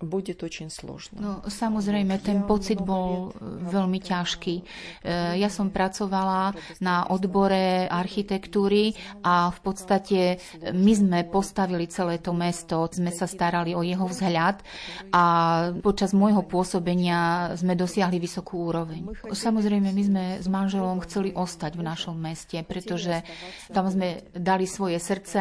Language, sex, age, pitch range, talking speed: Slovak, female, 30-49, 170-190 Hz, 130 wpm